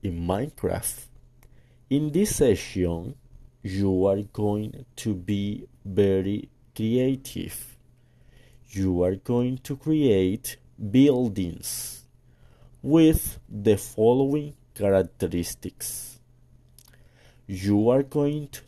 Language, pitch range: English, 105-125 Hz